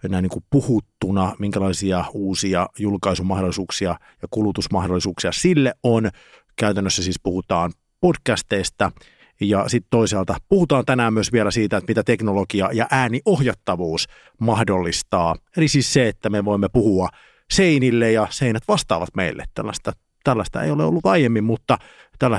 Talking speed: 130 wpm